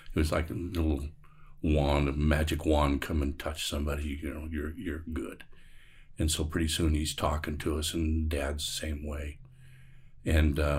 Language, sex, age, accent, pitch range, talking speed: English, male, 50-69, American, 75-85 Hz, 180 wpm